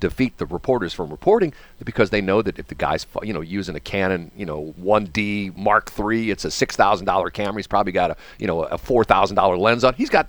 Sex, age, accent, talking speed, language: male, 40-59, American, 245 wpm, English